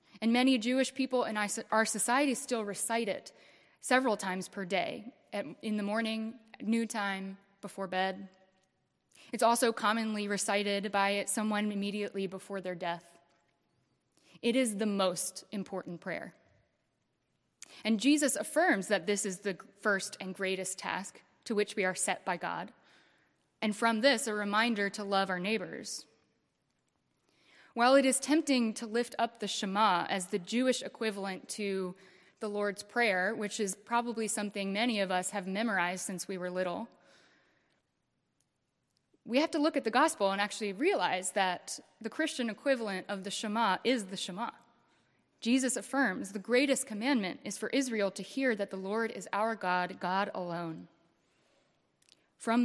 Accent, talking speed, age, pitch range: American, 150 wpm, 20-39, 195-235 Hz